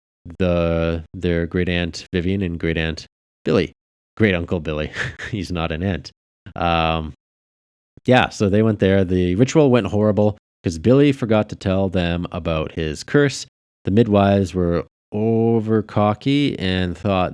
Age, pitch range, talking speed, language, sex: 30-49, 80-105 Hz, 145 wpm, English, male